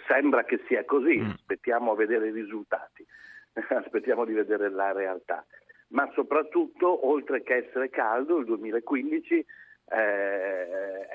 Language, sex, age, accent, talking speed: Italian, male, 50-69, native, 125 wpm